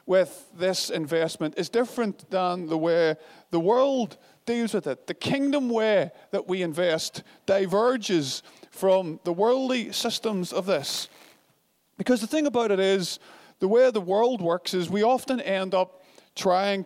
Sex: male